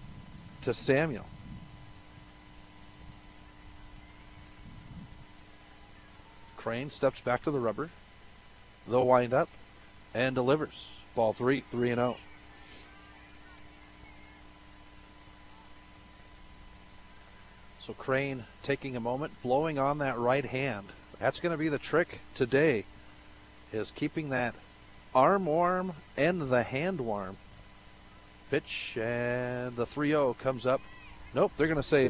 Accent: American